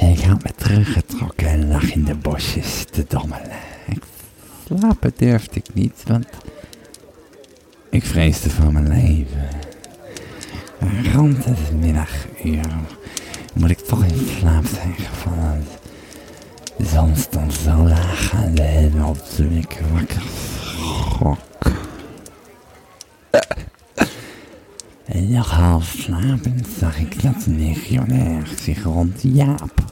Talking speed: 110 wpm